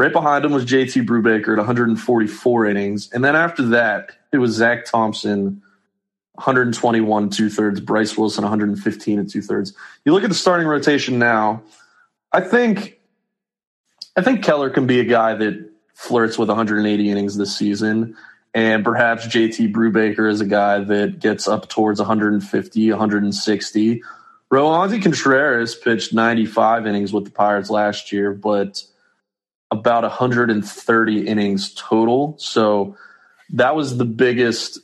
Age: 20-39